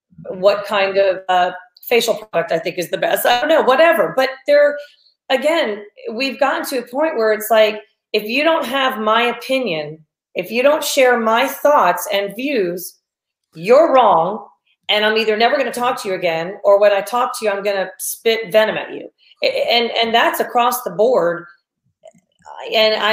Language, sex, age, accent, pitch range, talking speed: English, female, 40-59, American, 200-260 Hz, 185 wpm